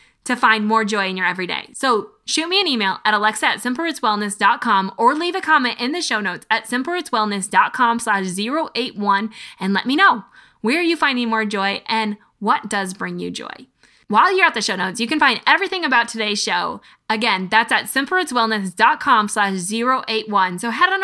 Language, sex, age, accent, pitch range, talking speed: English, female, 20-39, American, 210-280 Hz, 185 wpm